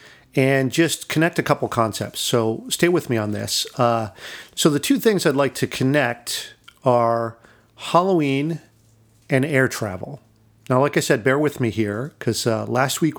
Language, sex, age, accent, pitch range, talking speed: English, male, 40-59, American, 115-140 Hz, 175 wpm